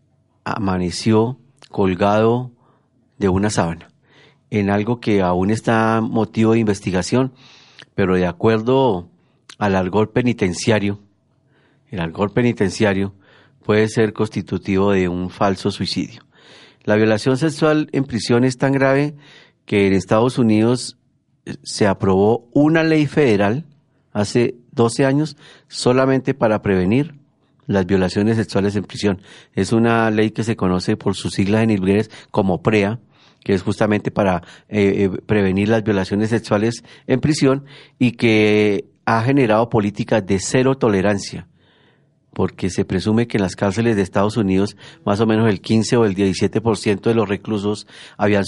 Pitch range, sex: 100-130 Hz, male